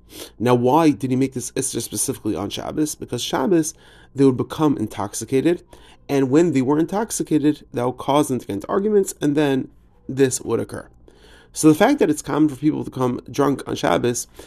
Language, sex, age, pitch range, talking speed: English, male, 30-49, 120-150 Hz, 195 wpm